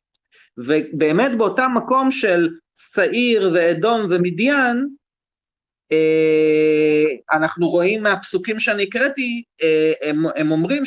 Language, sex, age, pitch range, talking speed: Hebrew, male, 40-59, 150-215 Hz, 75 wpm